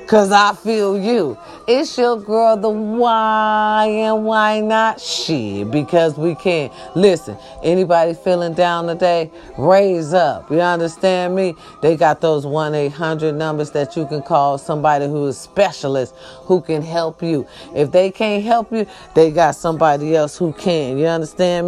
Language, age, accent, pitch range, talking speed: English, 40-59, American, 145-200 Hz, 155 wpm